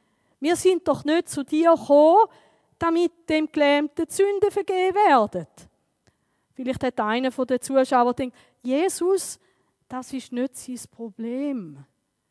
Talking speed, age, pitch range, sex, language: 125 wpm, 20-39, 210-260 Hz, female, German